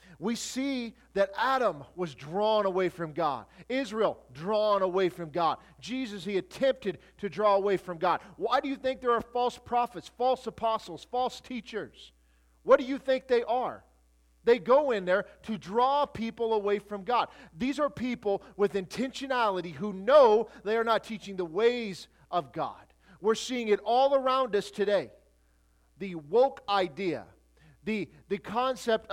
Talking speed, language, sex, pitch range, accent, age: 160 wpm, English, male, 195-255 Hz, American, 40-59